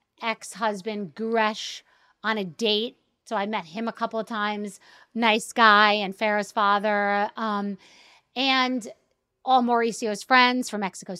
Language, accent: English, American